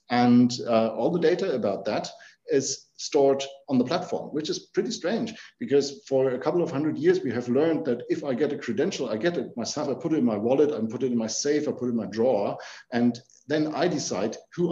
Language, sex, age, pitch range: English, male, 50-69, 120-175 Hz